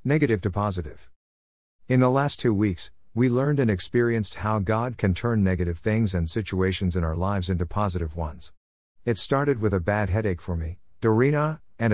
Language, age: English, 50-69